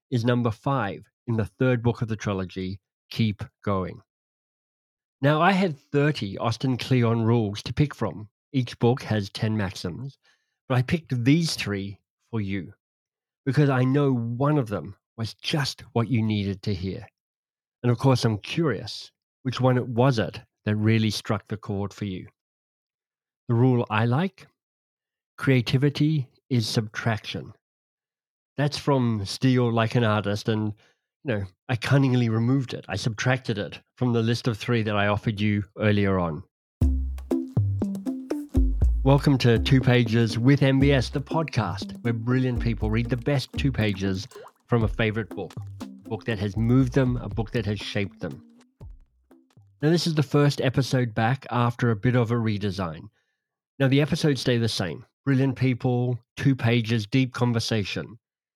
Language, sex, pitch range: English, male, 105-135 Hz